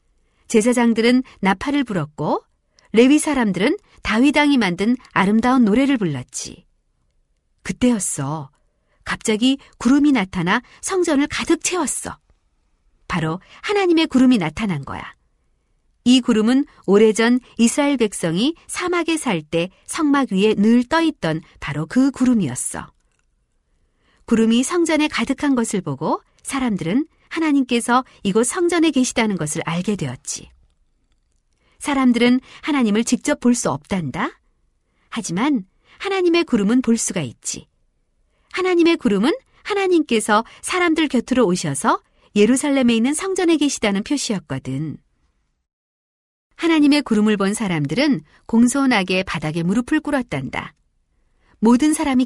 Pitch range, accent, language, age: 190-285 Hz, native, Korean, 40-59